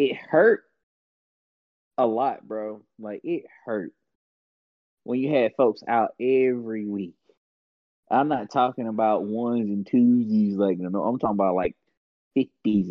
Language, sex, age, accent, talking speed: English, male, 20-39, American, 135 wpm